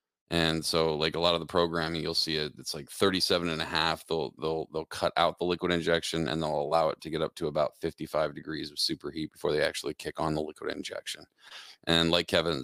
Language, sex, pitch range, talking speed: English, male, 80-85 Hz, 235 wpm